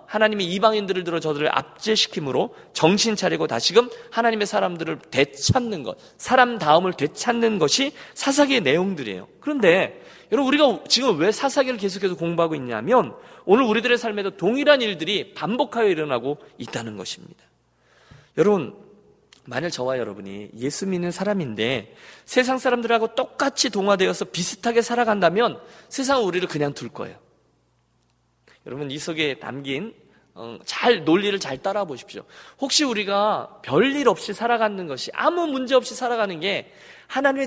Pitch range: 170-240 Hz